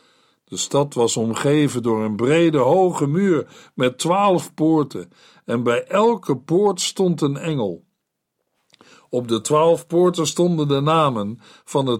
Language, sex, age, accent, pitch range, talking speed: Dutch, male, 50-69, Dutch, 130-170 Hz, 140 wpm